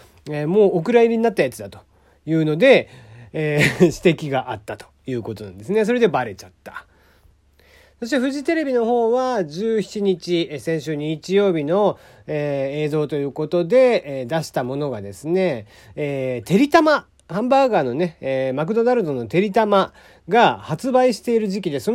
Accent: native